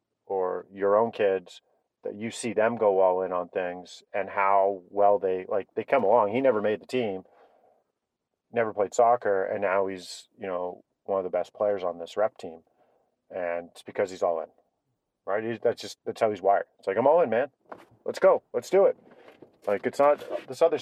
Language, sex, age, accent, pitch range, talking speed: English, male, 40-59, American, 100-145 Hz, 210 wpm